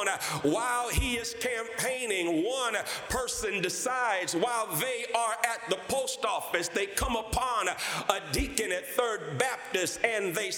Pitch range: 220-275 Hz